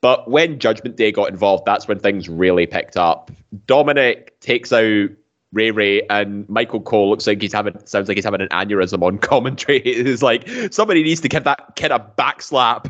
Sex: male